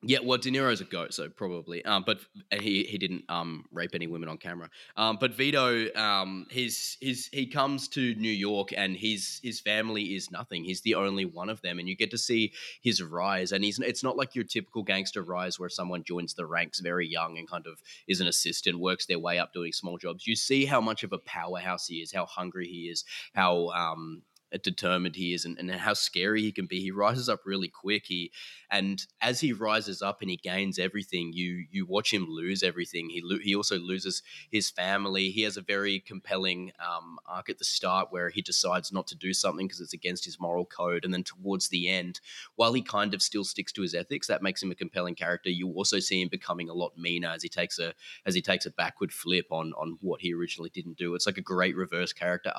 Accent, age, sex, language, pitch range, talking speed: Australian, 20-39, male, English, 90-105 Hz, 235 wpm